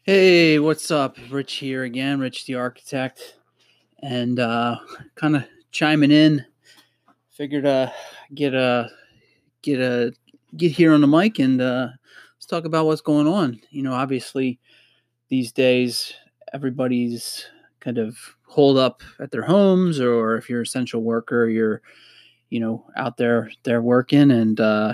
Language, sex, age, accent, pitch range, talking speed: English, male, 30-49, American, 115-135 Hz, 155 wpm